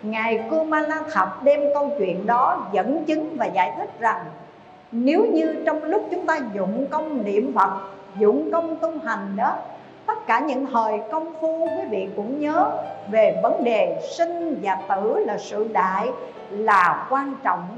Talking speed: 170 wpm